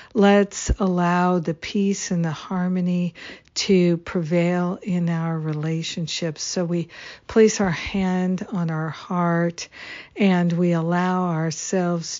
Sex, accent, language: female, American, English